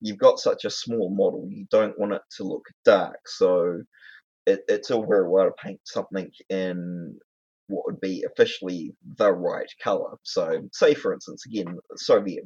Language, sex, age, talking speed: English, male, 20-39, 175 wpm